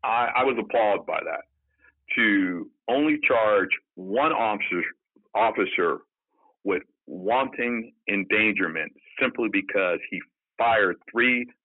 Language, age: English, 50-69